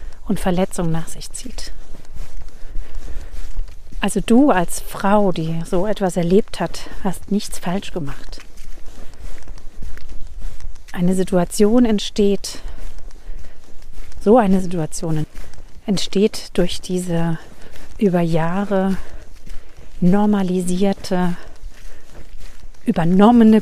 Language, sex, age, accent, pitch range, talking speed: German, female, 50-69, German, 145-210 Hz, 80 wpm